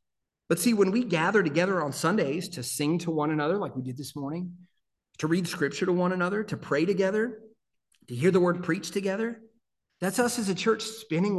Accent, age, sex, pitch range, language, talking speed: American, 40-59, male, 145-190 Hz, English, 205 wpm